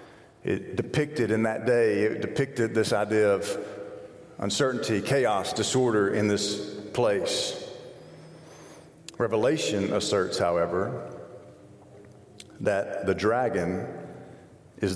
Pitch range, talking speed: 100-130 Hz, 90 wpm